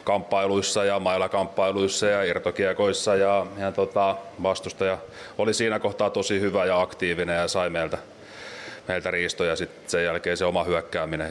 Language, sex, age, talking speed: Finnish, male, 30-49, 145 wpm